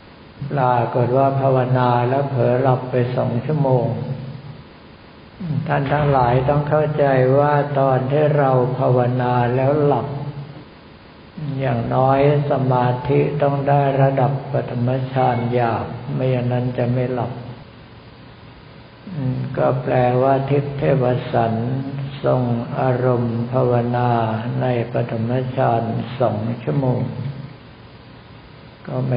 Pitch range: 120-135 Hz